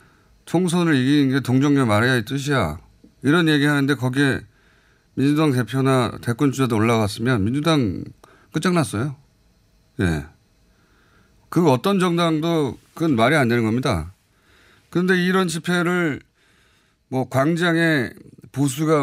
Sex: male